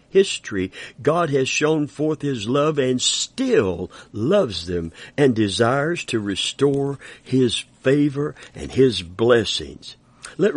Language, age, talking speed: English, 60-79, 120 wpm